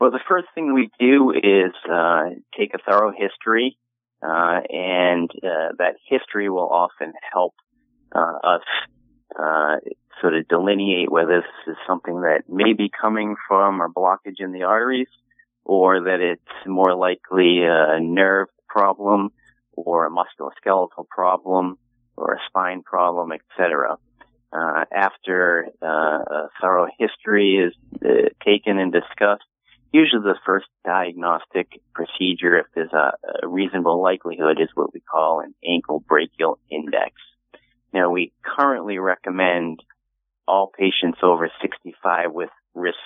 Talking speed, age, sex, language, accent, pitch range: 135 wpm, 30-49, male, English, American, 85-100 Hz